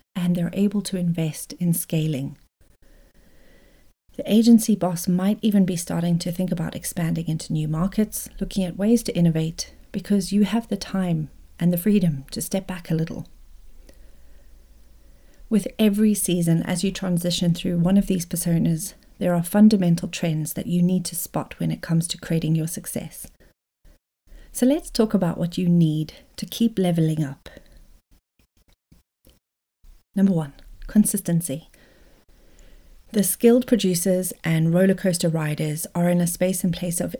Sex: female